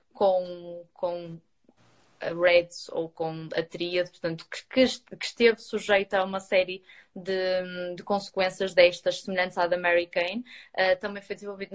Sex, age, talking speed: female, 20-39, 140 wpm